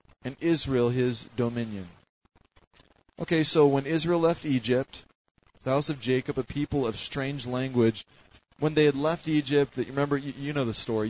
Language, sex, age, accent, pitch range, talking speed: English, male, 20-39, American, 110-140 Hz, 160 wpm